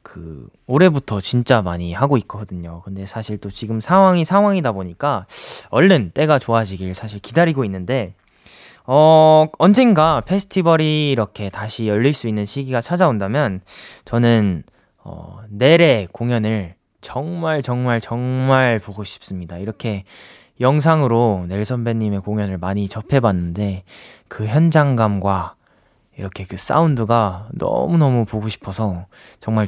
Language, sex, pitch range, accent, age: Korean, male, 100-150 Hz, native, 20-39